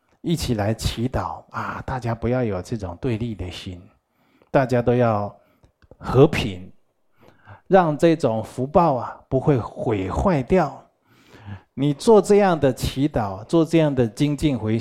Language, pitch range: Chinese, 110-150 Hz